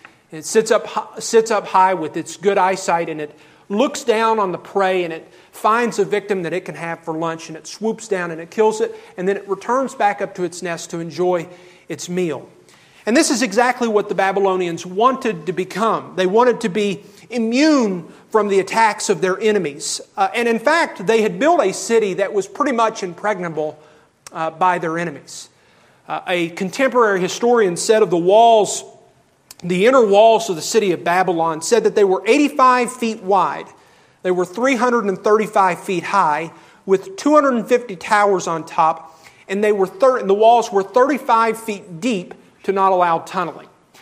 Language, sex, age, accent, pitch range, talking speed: English, male, 40-59, American, 180-225 Hz, 185 wpm